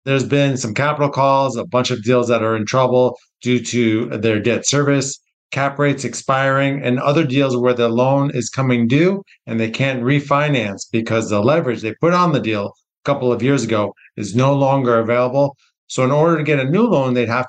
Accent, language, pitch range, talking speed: American, English, 115-145 Hz, 210 wpm